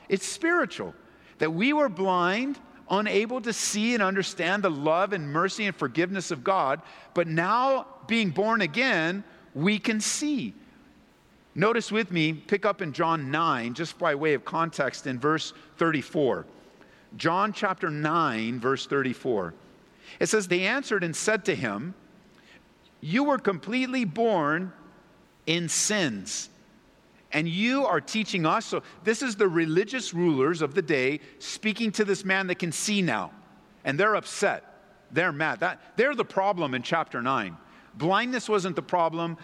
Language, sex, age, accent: English, male, 50-69, American